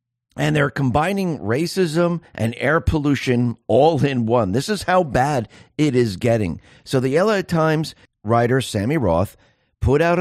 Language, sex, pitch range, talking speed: English, male, 105-140 Hz, 155 wpm